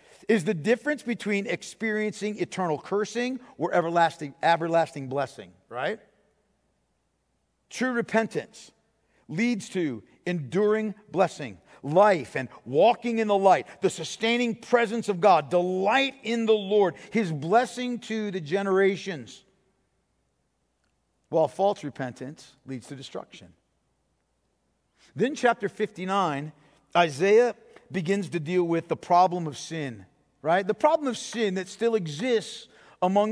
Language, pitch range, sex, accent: English, 165-230 Hz, male, American